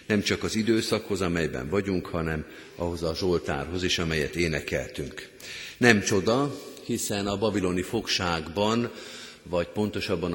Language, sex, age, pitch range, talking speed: Hungarian, male, 50-69, 85-110 Hz, 120 wpm